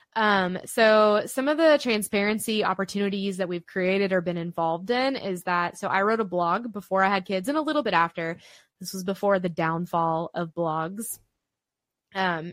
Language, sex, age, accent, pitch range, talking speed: English, female, 20-39, American, 175-205 Hz, 180 wpm